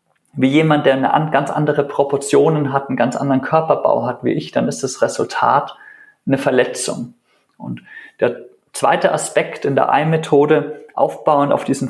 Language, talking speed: German, 155 wpm